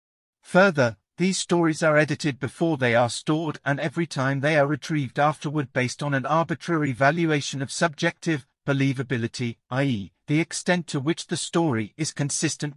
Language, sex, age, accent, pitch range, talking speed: English, male, 50-69, British, 135-165 Hz, 155 wpm